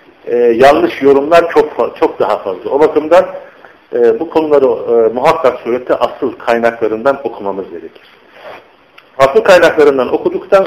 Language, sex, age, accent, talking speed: Turkish, male, 50-69, native, 125 wpm